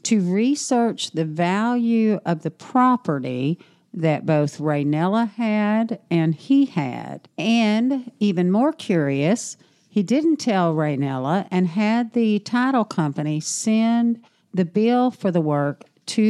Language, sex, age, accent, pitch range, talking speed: English, female, 50-69, American, 160-220 Hz, 125 wpm